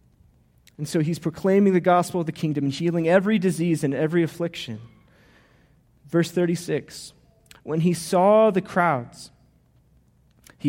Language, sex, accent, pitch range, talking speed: English, male, American, 125-170 Hz, 135 wpm